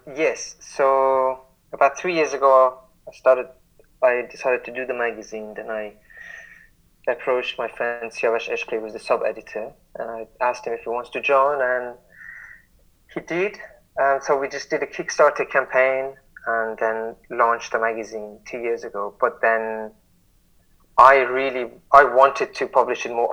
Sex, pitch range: male, 115-130 Hz